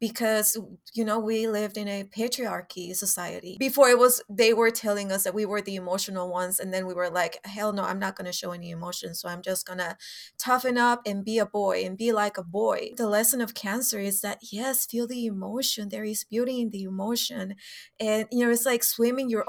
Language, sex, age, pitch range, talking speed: English, female, 20-39, 195-240 Hz, 230 wpm